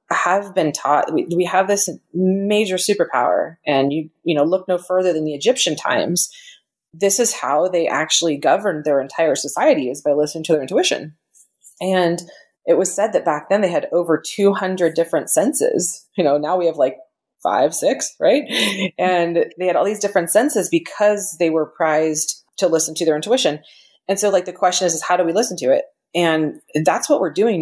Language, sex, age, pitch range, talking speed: English, female, 30-49, 160-205 Hz, 200 wpm